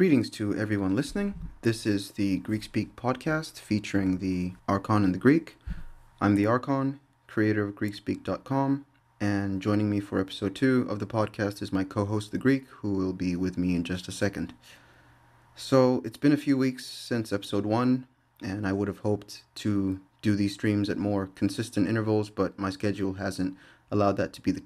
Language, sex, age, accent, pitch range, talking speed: English, male, 30-49, American, 100-115 Hz, 185 wpm